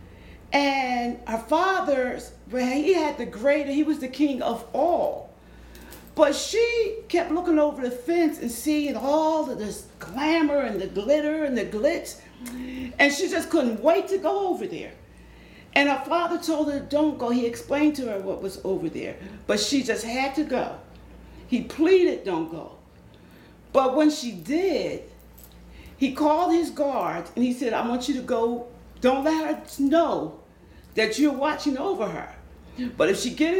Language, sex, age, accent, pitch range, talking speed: English, female, 40-59, American, 235-305 Hz, 170 wpm